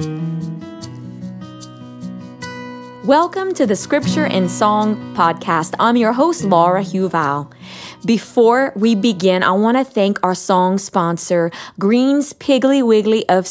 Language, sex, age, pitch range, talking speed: English, female, 20-39, 180-245 Hz, 115 wpm